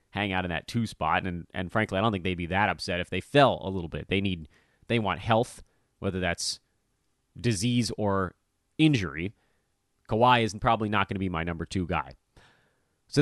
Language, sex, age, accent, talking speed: English, male, 30-49, American, 200 wpm